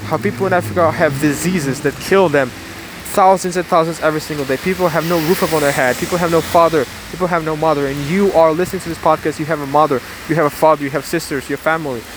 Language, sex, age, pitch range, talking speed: English, male, 20-39, 145-175 Hz, 250 wpm